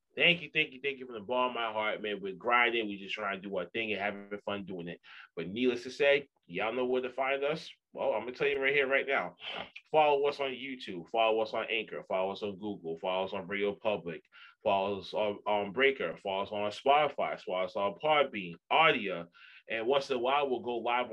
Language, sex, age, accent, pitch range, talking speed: English, male, 20-39, American, 100-160 Hz, 245 wpm